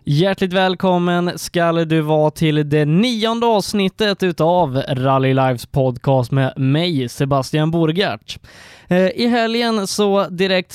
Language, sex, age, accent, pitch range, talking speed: Swedish, male, 20-39, native, 140-185 Hz, 115 wpm